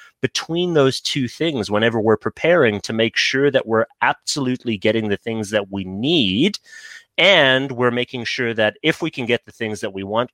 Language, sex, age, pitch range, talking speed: English, male, 30-49, 95-120 Hz, 190 wpm